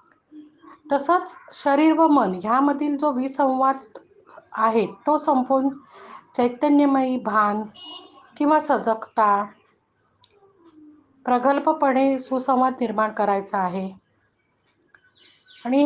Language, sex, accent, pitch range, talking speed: Marathi, female, native, 225-310 Hz, 75 wpm